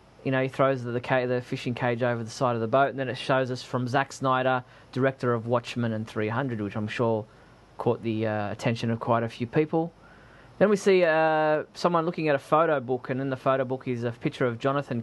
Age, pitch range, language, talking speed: 20-39, 115-135 Hz, English, 240 wpm